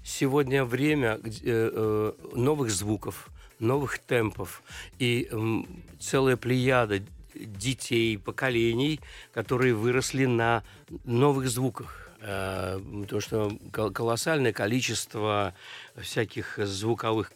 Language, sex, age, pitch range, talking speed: Russian, male, 60-79, 110-135 Hz, 90 wpm